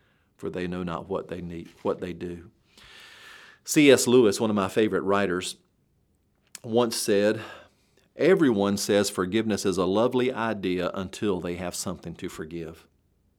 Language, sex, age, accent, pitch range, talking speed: English, male, 40-59, American, 95-135 Hz, 145 wpm